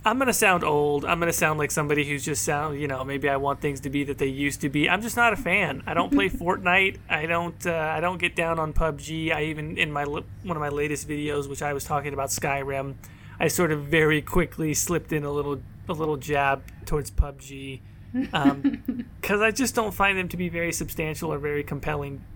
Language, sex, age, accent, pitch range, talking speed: English, male, 30-49, American, 140-170 Hz, 235 wpm